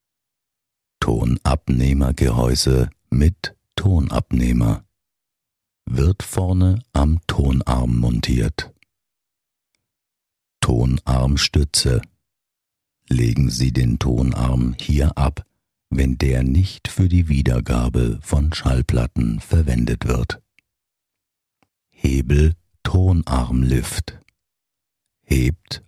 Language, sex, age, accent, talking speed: German, male, 60-79, German, 65 wpm